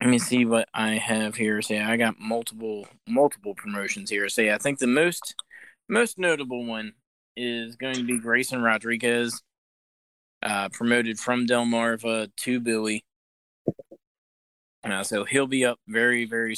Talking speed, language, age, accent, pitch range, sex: 165 wpm, English, 20-39, American, 110-135 Hz, male